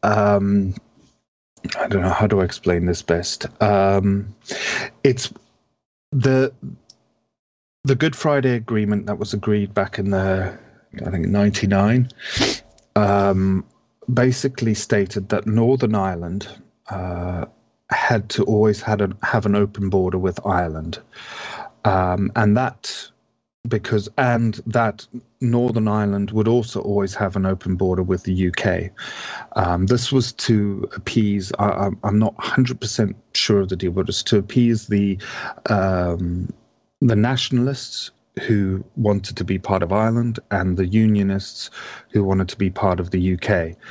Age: 40-59